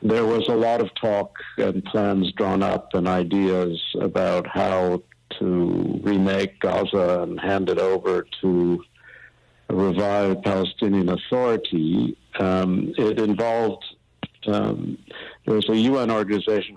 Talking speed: 120 wpm